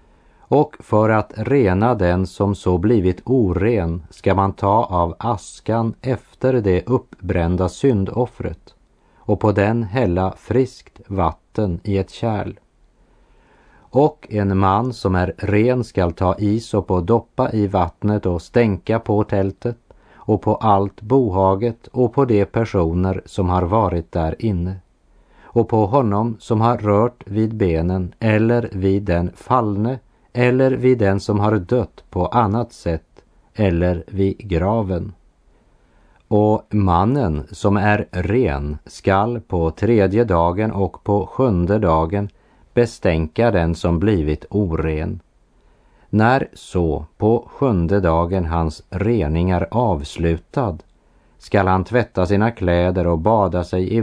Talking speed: 130 wpm